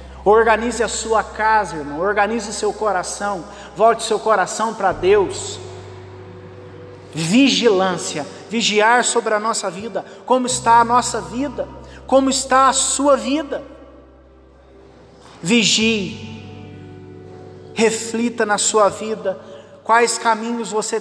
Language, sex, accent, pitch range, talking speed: Portuguese, male, Brazilian, 185-250 Hz, 105 wpm